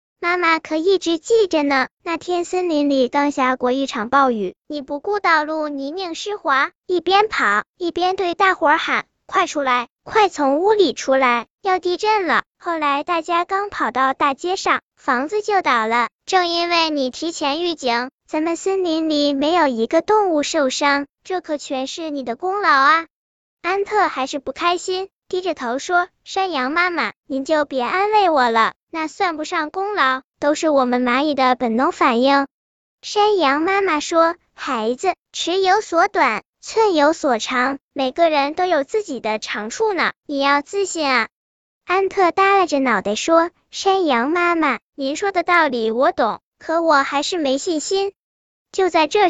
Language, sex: Chinese, male